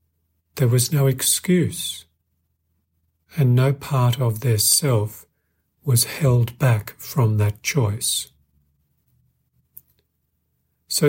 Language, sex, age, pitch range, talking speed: English, male, 50-69, 85-130 Hz, 90 wpm